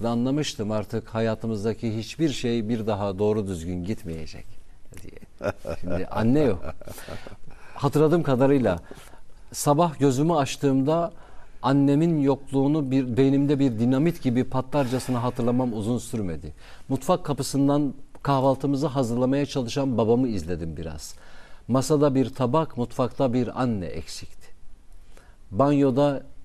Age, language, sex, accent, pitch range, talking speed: 50-69, Turkish, male, native, 110-140 Hz, 105 wpm